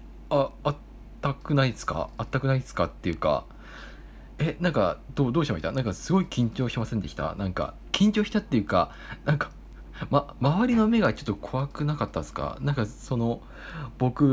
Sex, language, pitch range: male, Japanese, 100-150 Hz